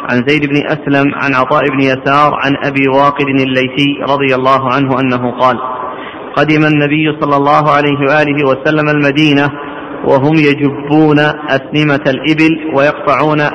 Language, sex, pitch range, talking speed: Arabic, male, 135-150 Hz, 135 wpm